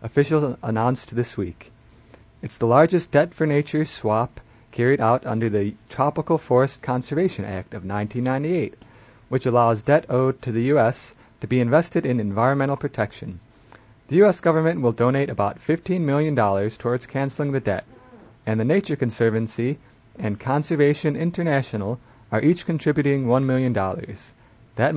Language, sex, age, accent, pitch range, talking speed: English, male, 30-49, American, 110-145 Hz, 135 wpm